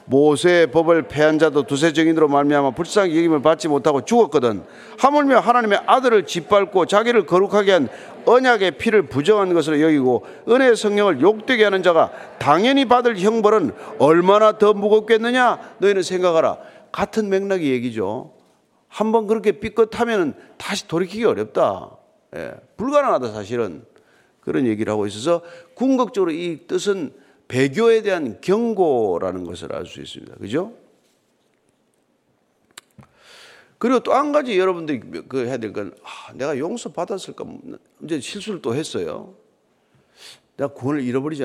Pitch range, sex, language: 145-220 Hz, male, Korean